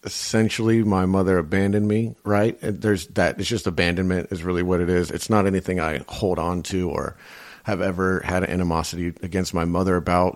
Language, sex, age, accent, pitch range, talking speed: English, male, 40-59, American, 85-95 Hz, 185 wpm